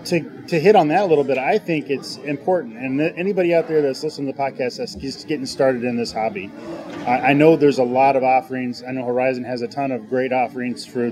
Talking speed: 255 wpm